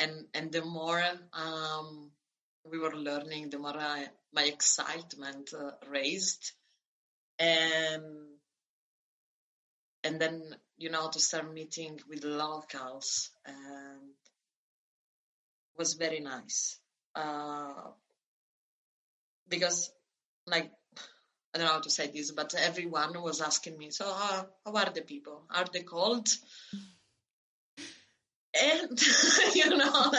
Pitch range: 150-195 Hz